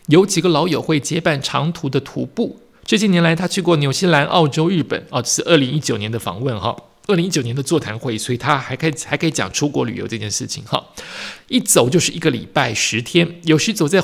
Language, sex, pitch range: Chinese, male, 145-180 Hz